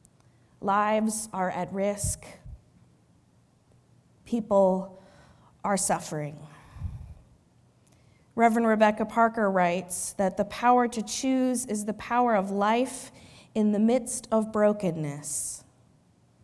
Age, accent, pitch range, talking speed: 20-39, American, 165-220 Hz, 95 wpm